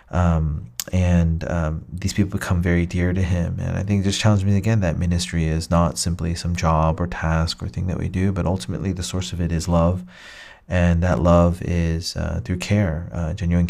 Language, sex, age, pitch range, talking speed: English, male, 30-49, 85-95 Hz, 210 wpm